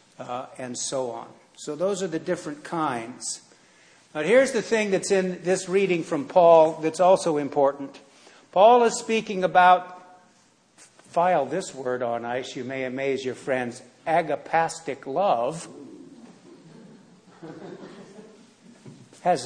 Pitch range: 145-180 Hz